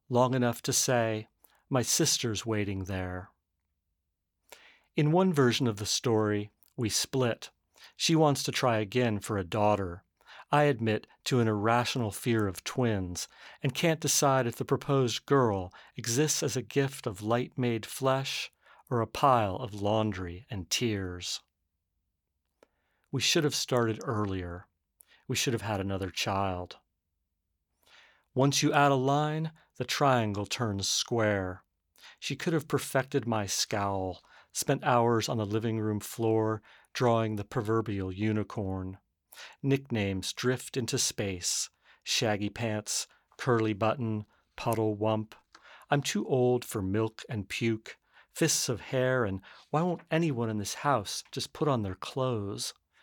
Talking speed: 140 wpm